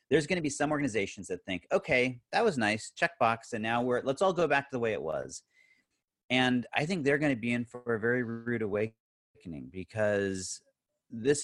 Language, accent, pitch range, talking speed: English, American, 100-135 Hz, 210 wpm